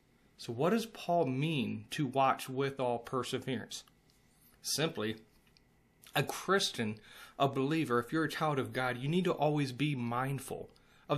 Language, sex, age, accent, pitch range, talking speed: English, male, 30-49, American, 125-150 Hz, 150 wpm